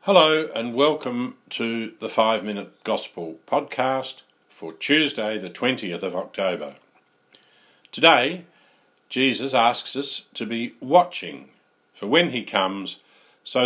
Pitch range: 100-135 Hz